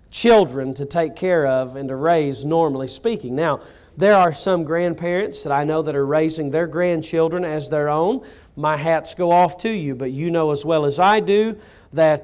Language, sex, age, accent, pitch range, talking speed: English, male, 40-59, American, 140-190 Hz, 200 wpm